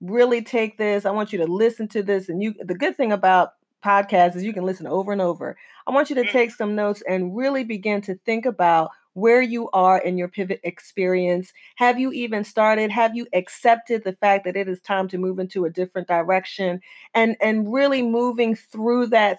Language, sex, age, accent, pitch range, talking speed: English, female, 40-59, American, 185-230 Hz, 215 wpm